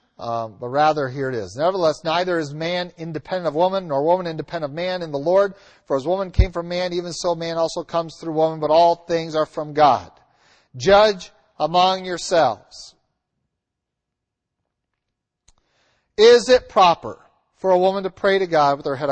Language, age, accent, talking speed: English, 50-69, American, 175 wpm